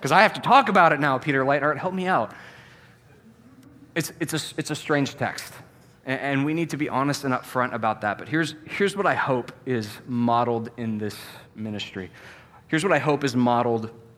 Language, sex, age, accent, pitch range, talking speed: English, male, 20-39, American, 120-150 Hz, 205 wpm